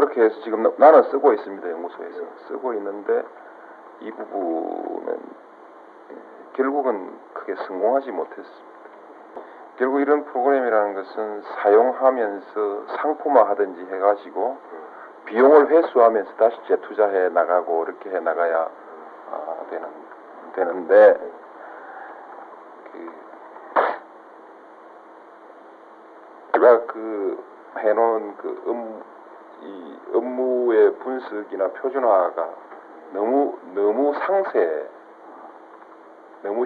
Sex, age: male, 40-59